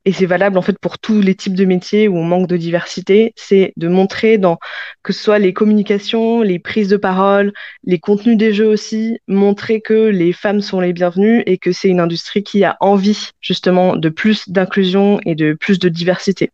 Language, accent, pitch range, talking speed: French, French, 175-205 Hz, 210 wpm